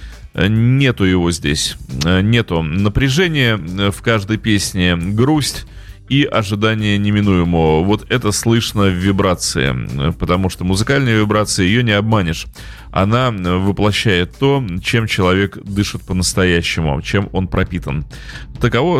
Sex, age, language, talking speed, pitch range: male, 30-49, Russian, 110 wpm, 100-135 Hz